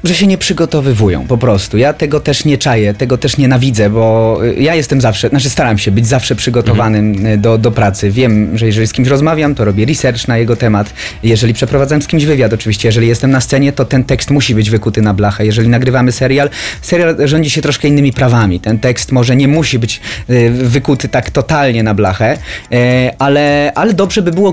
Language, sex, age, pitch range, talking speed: Polish, male, 30-49, 110-145 Hz, 200 wpm